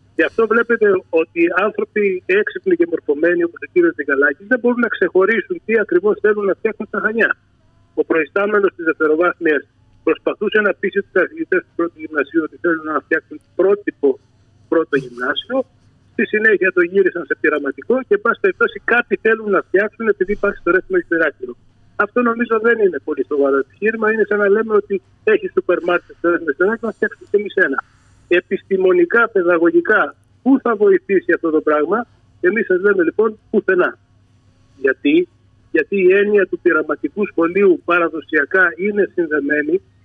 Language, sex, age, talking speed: Greek, male, 50-69, 160 wpm